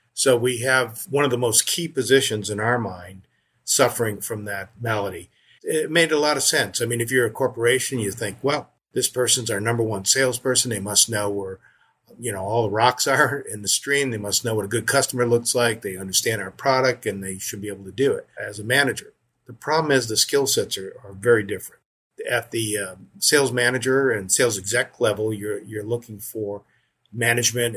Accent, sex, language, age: American, male, English, 50-69